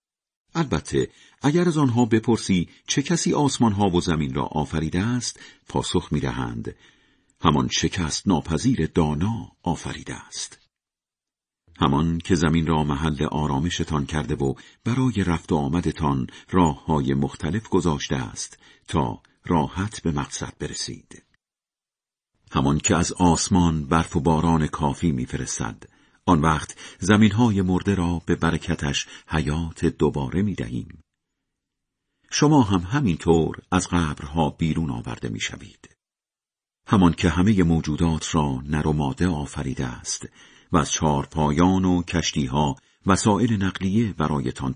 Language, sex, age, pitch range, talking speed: Persian, male, 50-69, 75-95 Hz, 120 wpm